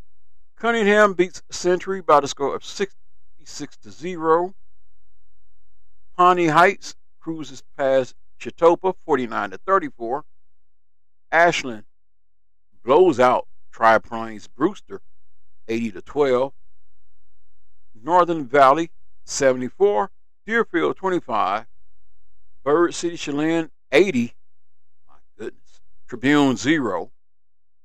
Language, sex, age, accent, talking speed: English, male, 50-69, American, 85 wpm